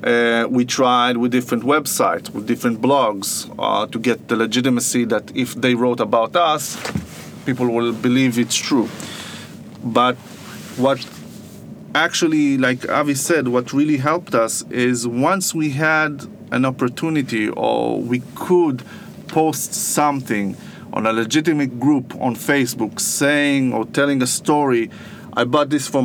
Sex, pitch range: male, 120-150 Hz